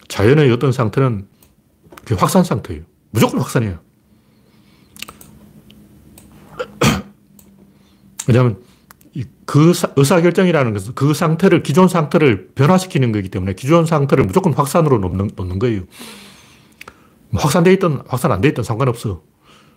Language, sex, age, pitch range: Korean, male, 40-59, 105-145 Hz